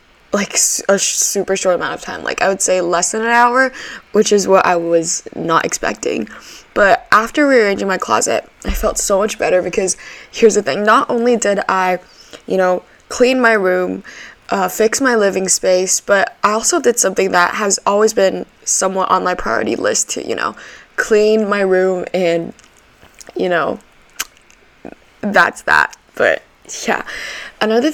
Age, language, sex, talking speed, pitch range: 10-29, English, female, 170 wpm, 185-220 Hz